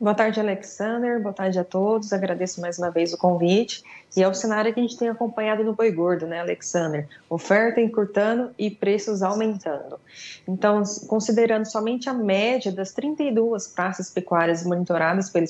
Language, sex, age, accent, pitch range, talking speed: Portuguese, female, 20-39, Brazilian, 185-230 Hz, 165 wpm